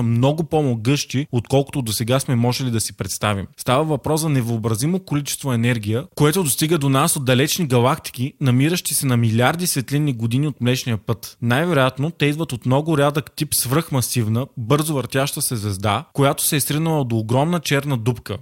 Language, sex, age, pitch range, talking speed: Bulgarian, male, 20-39, 120-145 Hz, 165 wpm